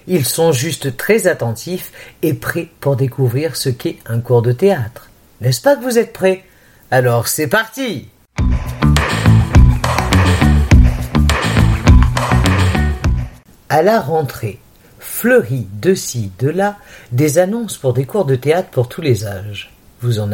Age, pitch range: 50-69, 115-170 Hz